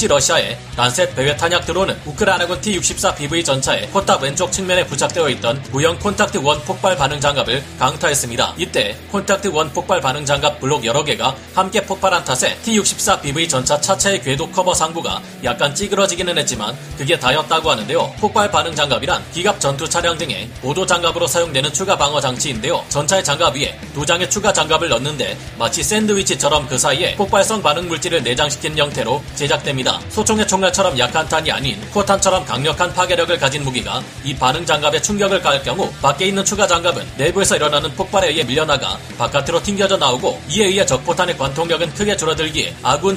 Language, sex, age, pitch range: Korean, male, 40-59, 145-190 Hz